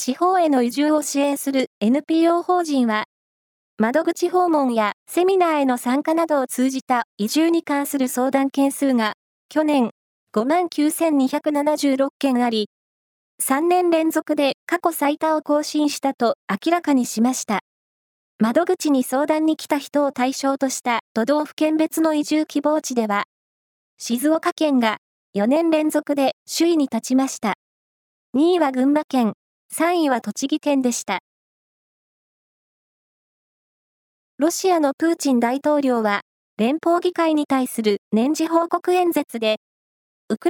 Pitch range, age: 255-320 Hz, 20-39